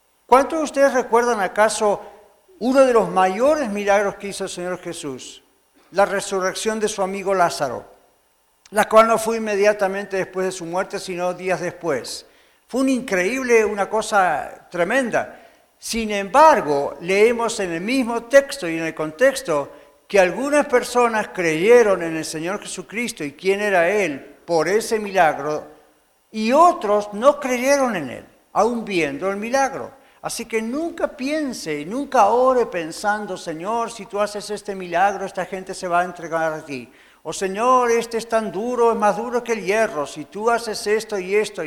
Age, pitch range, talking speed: 60-79, 170-230 Hz, 165 wpm